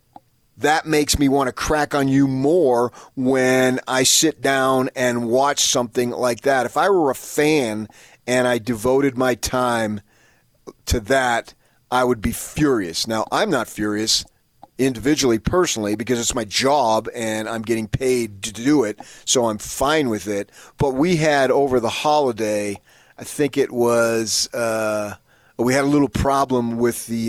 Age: 30-49